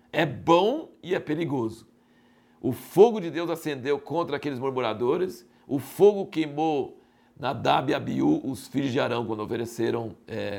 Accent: Brazilian